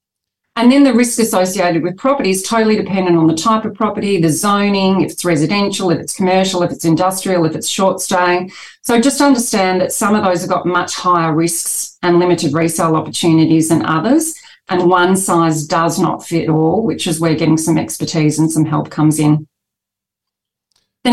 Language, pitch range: English, 160-190 Hz